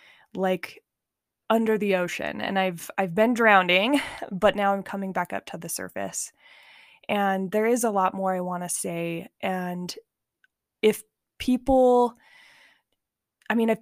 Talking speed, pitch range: 150 wpm, 185-225 Hz